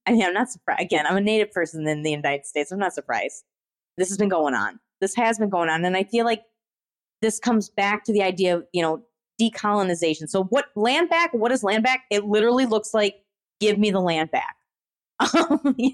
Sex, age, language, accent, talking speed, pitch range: female, 30-49, English, American, 225 wpm, 180-235 Hz